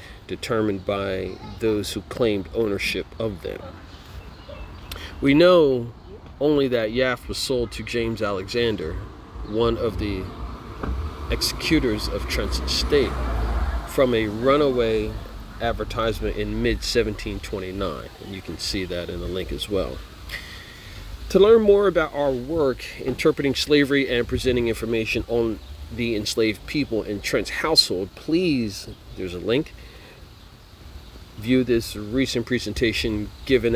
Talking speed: 120 wpm